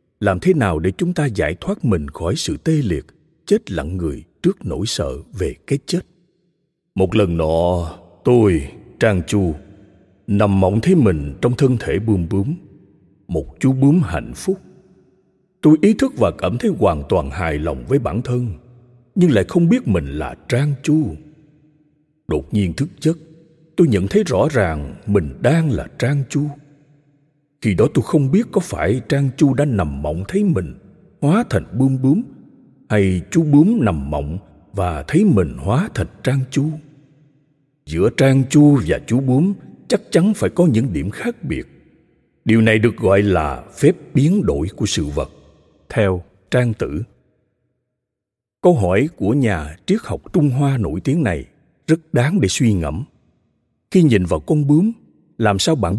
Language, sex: Vietnamese, male